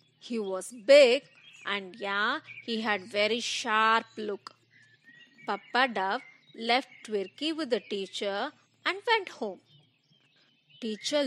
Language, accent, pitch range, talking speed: English, Indian, 195-295 Hz, 110 wpm